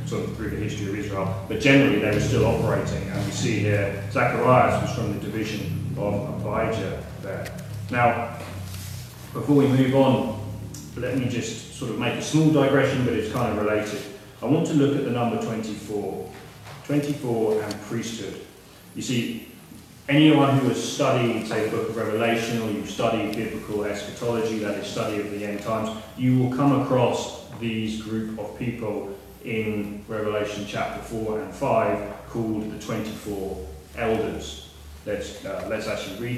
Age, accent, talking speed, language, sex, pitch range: 30-49, British, 165 wpm, English, male, 105-135 Hz